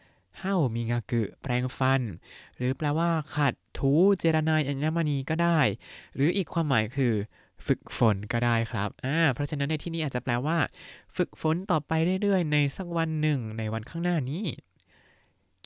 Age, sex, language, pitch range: 20-39, male, Thai, 115-150 Hz